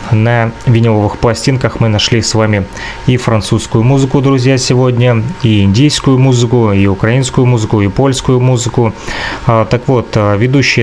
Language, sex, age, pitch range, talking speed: Russian, male, 20-39, 110-130 Hz, 135 wpm